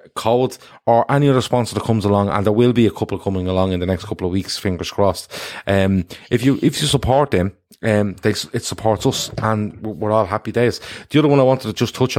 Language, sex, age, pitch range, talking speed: English, male, 30-49, 90-110 Hz, 240 wpm